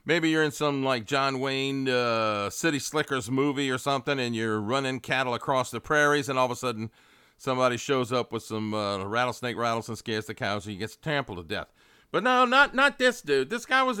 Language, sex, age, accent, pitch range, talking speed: English, male, 50-69, American, 120-170 Hz, 225 wpm